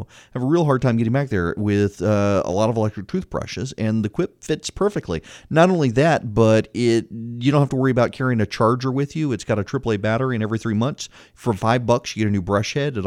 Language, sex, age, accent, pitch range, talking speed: English, male, 40-59, American, 100-130 Hz, 255 wpm